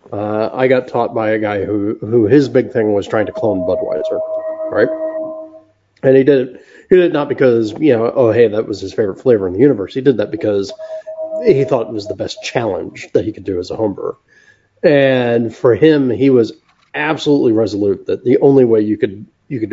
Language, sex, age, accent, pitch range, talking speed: English, male, 30-49, American, 110-140 Hz, 220 wpm